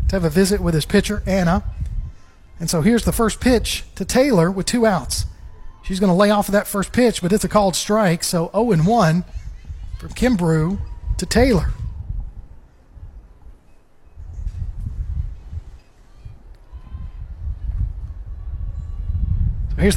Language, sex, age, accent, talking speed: English, male, 40-59, American, 115 wpm